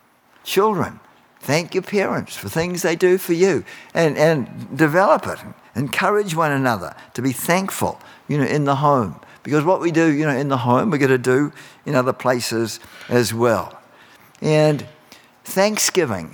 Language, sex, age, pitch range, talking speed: English, male, 60-79, 130-170 Hz, 165 wpm